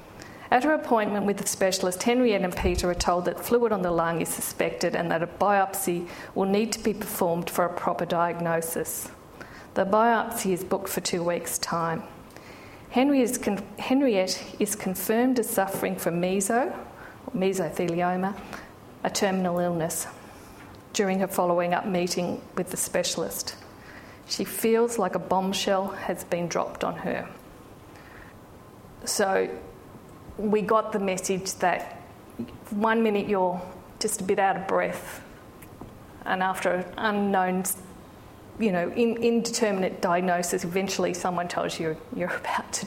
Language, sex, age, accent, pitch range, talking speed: English, female, 50-69, Australian, 175-215 Hz, 135 wpm